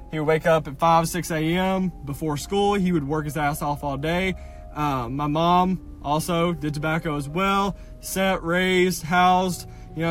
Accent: American